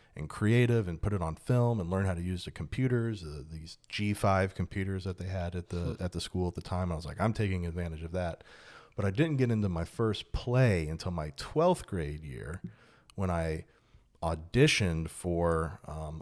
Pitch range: 85-120 Hz